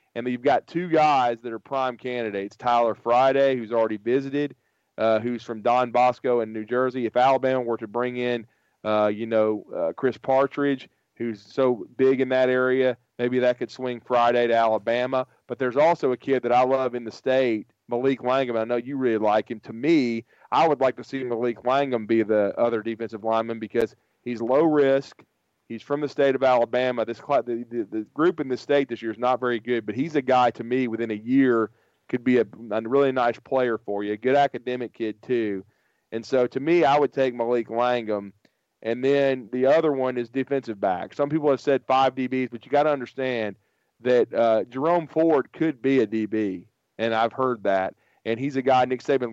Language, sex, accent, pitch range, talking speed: English, male, American, 115-135 Hz, 210 wpm